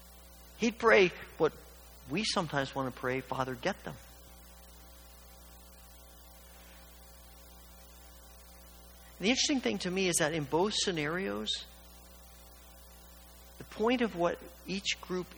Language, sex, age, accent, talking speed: English, male, 50-69, American, 105 wpm